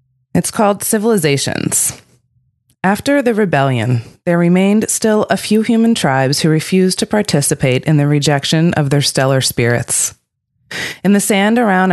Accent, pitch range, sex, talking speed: American, 135-185 Hz, female, 140 wpm